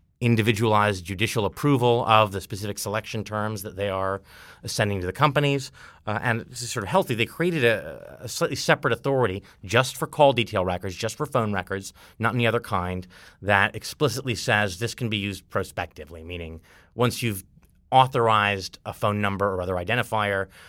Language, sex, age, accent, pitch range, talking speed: English, male, 30-49, American, 95-120 Hz, 175 wpm